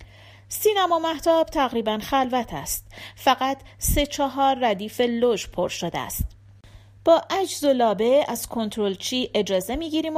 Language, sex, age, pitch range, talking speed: Persian, female, 40-59, 195-270 Hz, 125 wpm